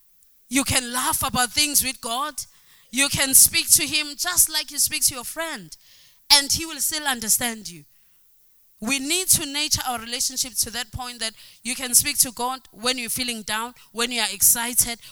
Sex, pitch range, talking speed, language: female, 200-270 Hz, 190 wpm, English